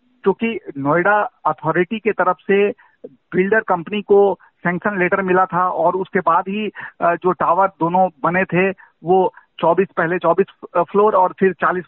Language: Hindi